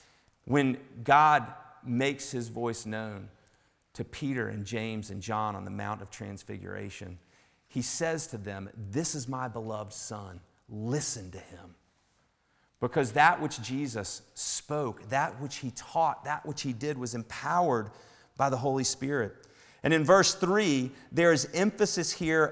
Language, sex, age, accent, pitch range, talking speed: English, male, 40-59, American, 110-145 Hz, 150 wpm